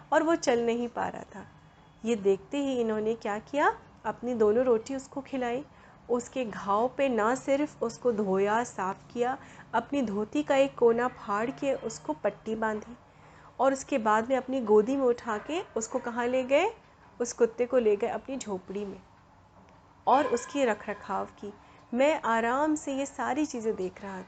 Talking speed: 175 wpm